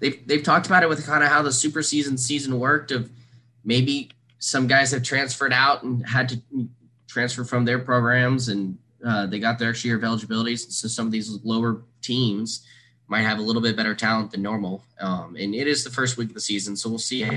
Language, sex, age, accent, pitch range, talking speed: English, male, 20-39, American, 110-125 Hz, 230 wpm